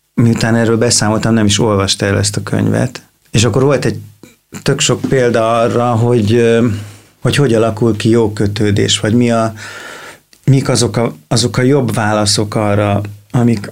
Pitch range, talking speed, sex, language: 105-125 Hz, 160 wpm, male, Hungarian